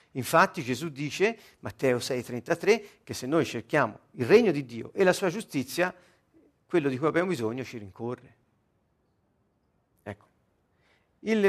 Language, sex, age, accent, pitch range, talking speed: Italian, male, 50-69, native, 120-170 Hz, 135 wpm